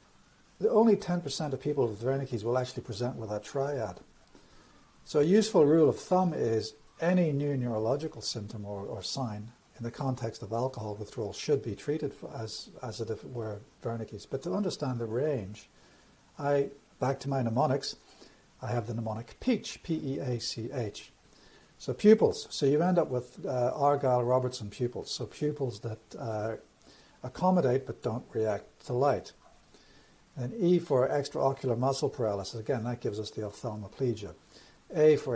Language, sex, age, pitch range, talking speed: English, male, 60-79, 110-140 Hz, 160 wpm